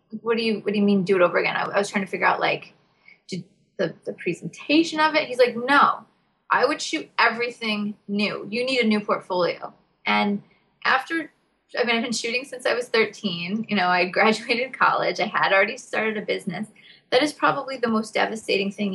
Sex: female